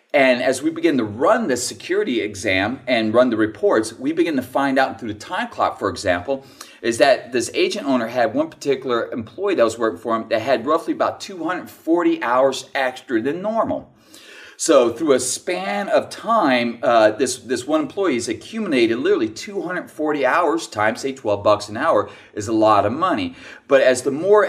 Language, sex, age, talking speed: English, male, 30-49, 190 wpm